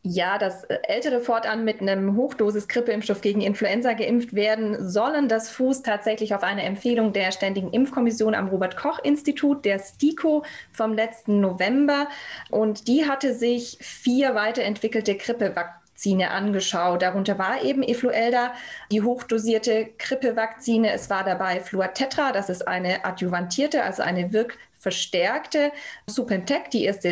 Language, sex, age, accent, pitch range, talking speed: German, female, 20-39, German, 195-240 Hz, 130 wpm